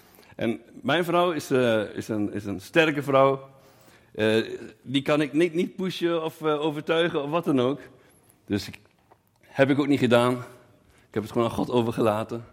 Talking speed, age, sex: 185 wpm, 60-79, male